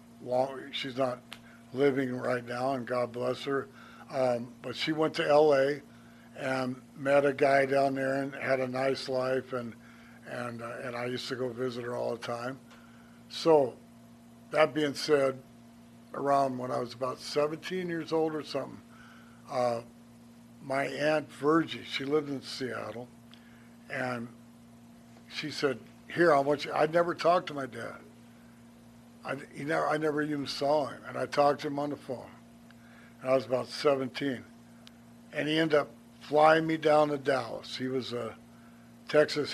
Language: English